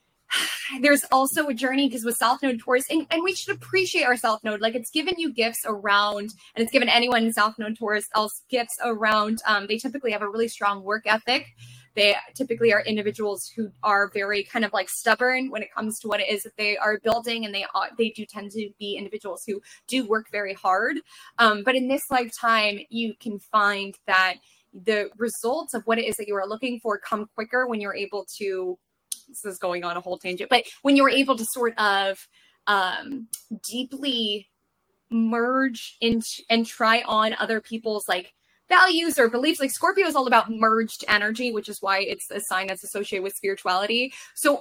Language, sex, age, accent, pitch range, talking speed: English, female, 20-39, American, 205-255 Hz, 200 wpm